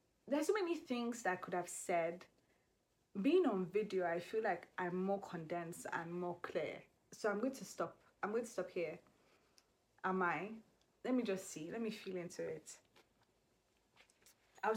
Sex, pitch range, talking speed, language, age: female, 175-215 Hz, 170 wpm, English, 20-39